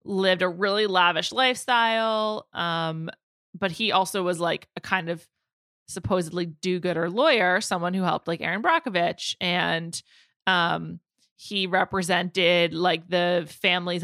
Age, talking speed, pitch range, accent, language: 20-39, 130 wpm, 175-210 Hz, American, English